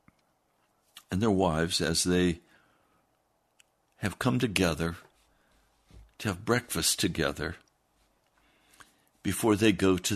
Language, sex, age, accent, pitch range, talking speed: English, male, 60-79, American, 95-125 Hz, 95 wpm